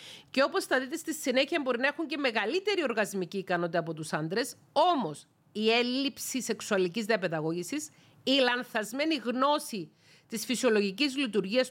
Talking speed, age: 140 wpm, 40-59